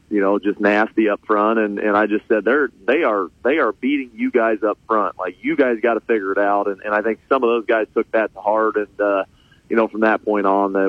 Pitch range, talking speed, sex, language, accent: 110-125 Hz, 275 wpm, male, English, American